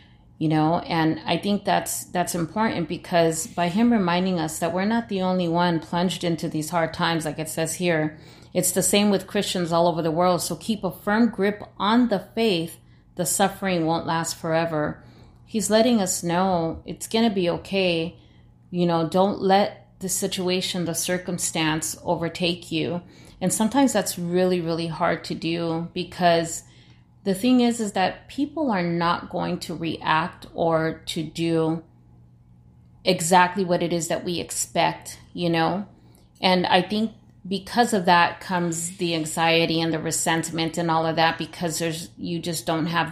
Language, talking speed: English, 170 wpm